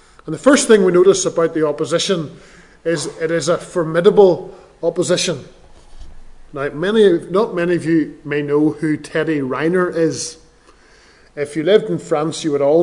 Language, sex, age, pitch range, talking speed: English, male, 30-49, 150-190 Hz, 165 wpm